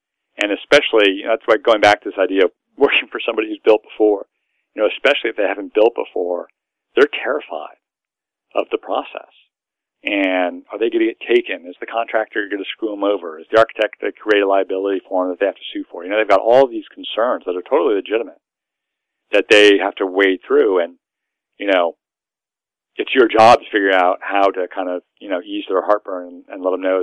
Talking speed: 225 wpm